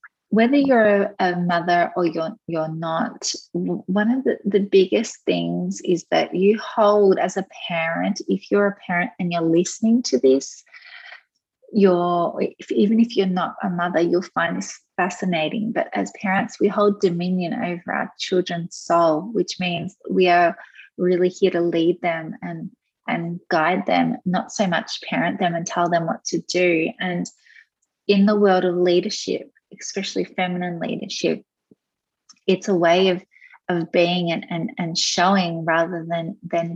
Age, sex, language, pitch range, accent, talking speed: 20-39, female, English, 170-205 Hz, Australian, 160 wpm